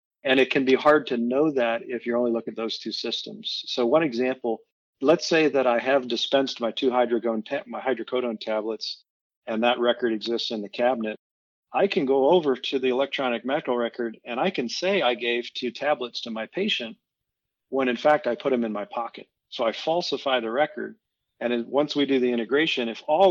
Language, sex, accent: English, male, American